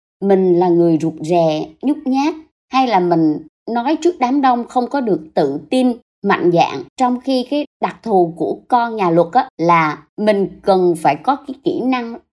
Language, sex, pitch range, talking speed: Vietnamese, male, 195-300 Hz, 190 wpm